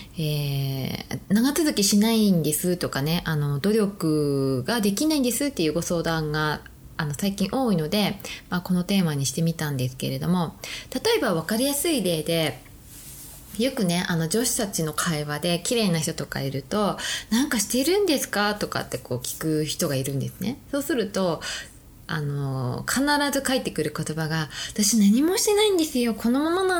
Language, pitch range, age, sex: Japanese, 155-240 Hz, 20-39, female